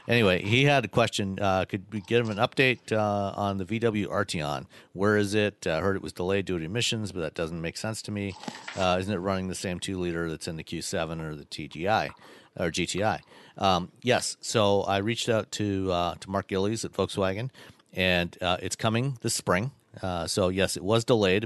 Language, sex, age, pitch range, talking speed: English, male, 50-69, 90-105 Hz, 215 wpm